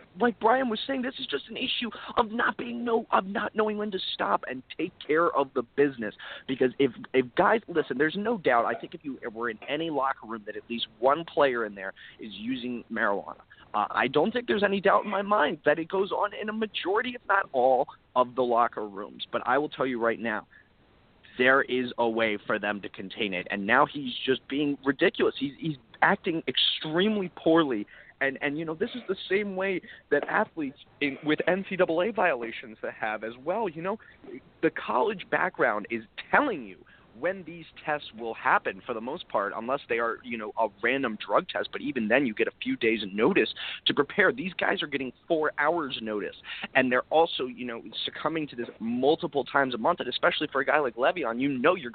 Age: 30-49